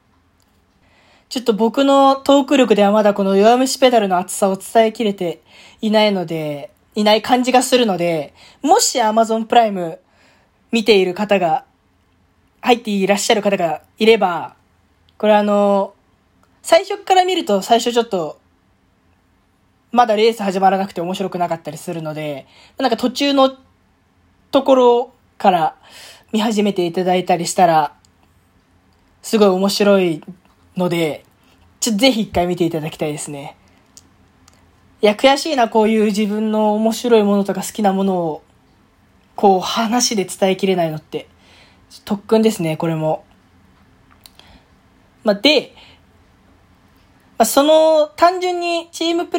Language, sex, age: Japanese, female, 20-39